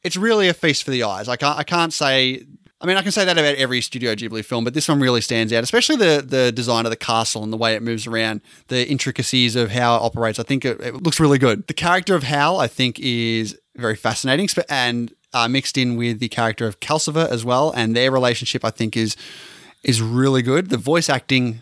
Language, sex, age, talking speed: English, male, 20-39, 240 wpm